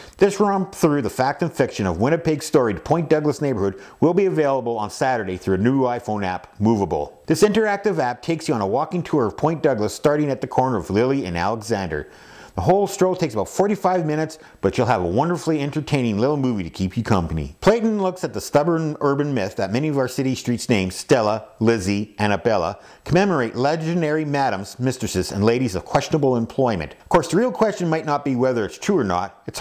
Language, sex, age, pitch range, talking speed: English, male, 50-69, 110-170 Hz, 210 wpm